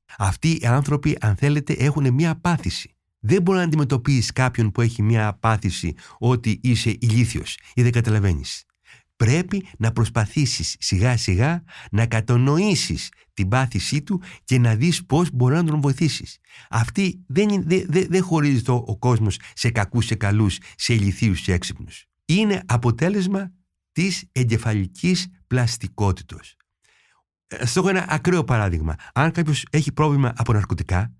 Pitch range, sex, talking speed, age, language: 110-160 Hz, male, 140 wpm, 60-79, Greek